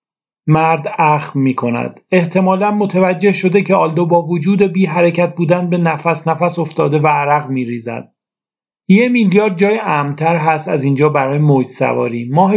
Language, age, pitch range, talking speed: Persian, 40-59, 150-180 Hz, 155 wpm